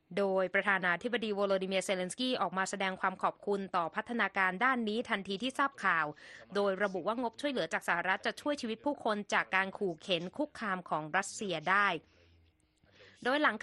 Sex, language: female, Thai